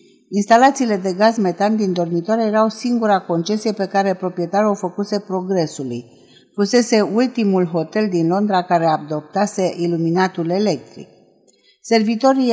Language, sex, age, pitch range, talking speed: Romanian, female, 50-69, 180-220 Hz, 120 wpm